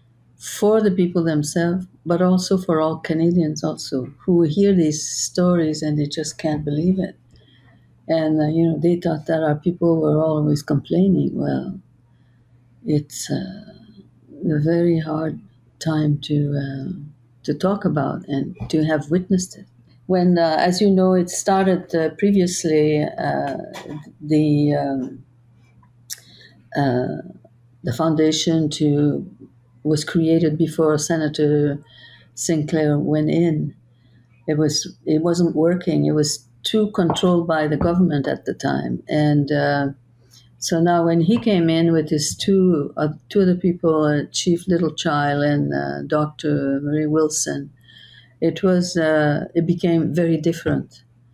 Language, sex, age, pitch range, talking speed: English, female, 50-69, 140-170 Hz, 140 wpm